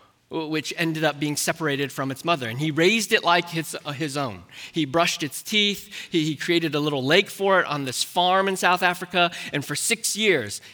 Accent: American